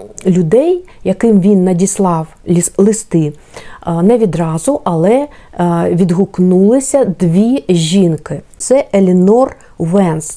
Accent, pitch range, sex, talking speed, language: native, 175-225 Hz, female, 80 wpm, Ukrainian